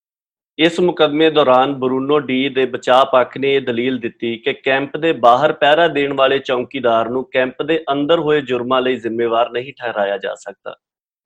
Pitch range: 125-150 Hz